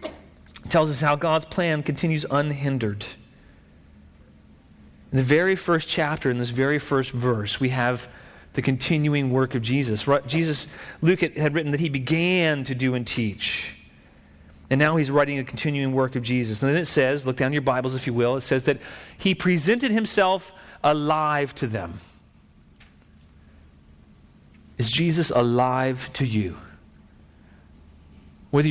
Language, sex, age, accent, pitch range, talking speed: English, male, 40-59, American, 105-165 Hz, 150 wpm